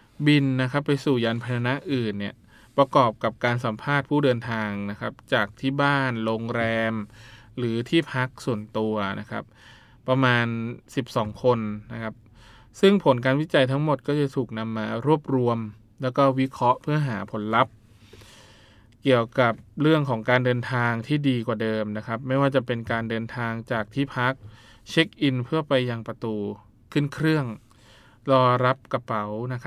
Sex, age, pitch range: male, 20-39, 110-130 Hz